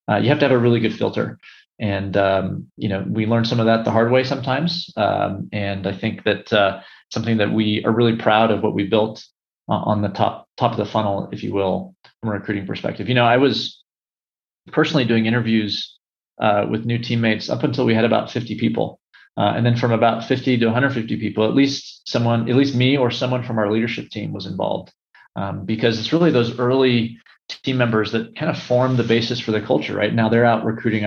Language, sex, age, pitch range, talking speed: English, male, 30-49, 110-125 Hz, 225 wpm